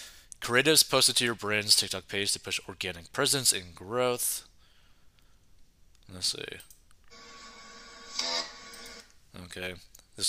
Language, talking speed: English, 100 wpm